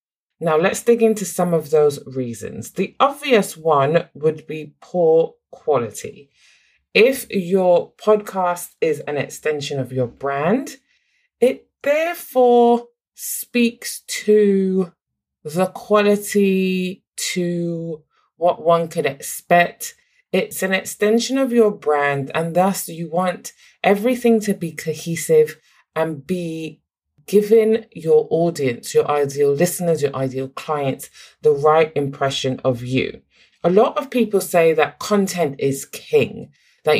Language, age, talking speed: English, 20-39, 120 wpm